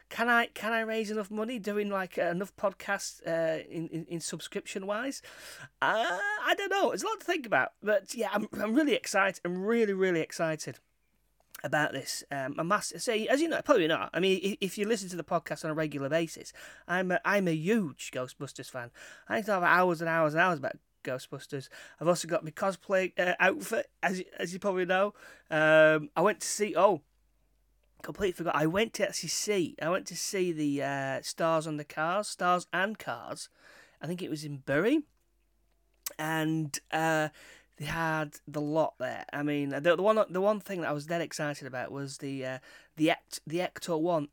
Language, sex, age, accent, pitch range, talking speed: English, male, 30-49, British, 155-210 Hz, 205 wpm